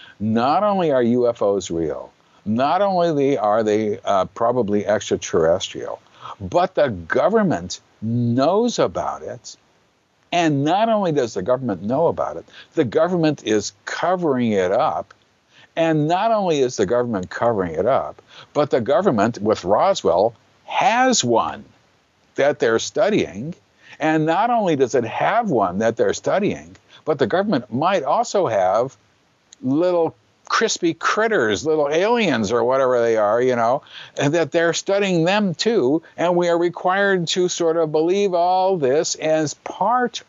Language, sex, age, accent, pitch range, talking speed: English, male, 60-79, American, 115-180 Hz, 145 wpm